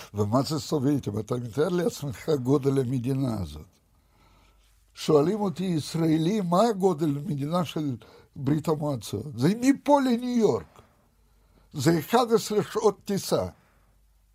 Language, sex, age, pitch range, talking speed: Hebrew, male, 60-79, 130-180 Hz, 115 wpm